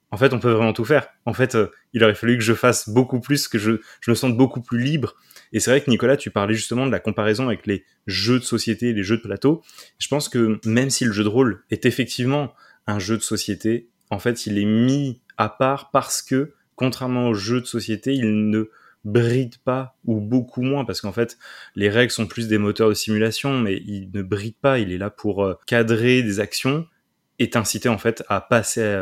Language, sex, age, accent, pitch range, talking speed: French, male, 20-39, French, 100-125 Hz, 230 wpm